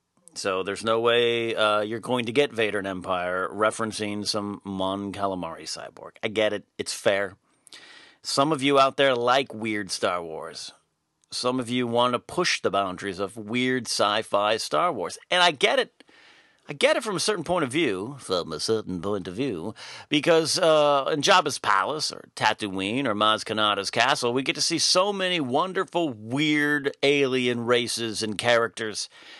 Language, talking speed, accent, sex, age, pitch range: English, 175 wpm, American, male, 40-59, 105-140 Hz